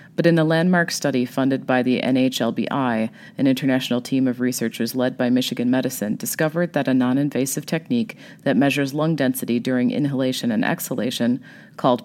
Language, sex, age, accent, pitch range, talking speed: English, female, 30-49, American, 125-155 Hz, 160 wpm